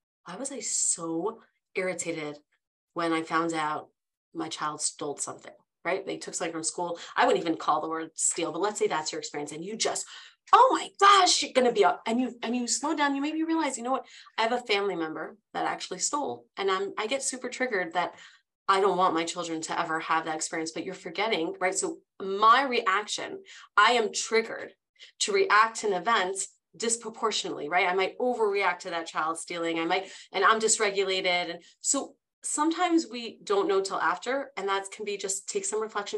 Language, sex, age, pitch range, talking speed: English, female, 30-49, 170-265 Hz, 205 wpm